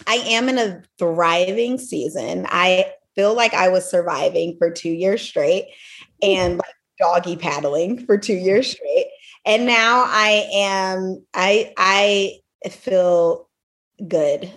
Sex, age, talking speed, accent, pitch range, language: female, 30-49, 130 wpm, American, 180-220 Hz, English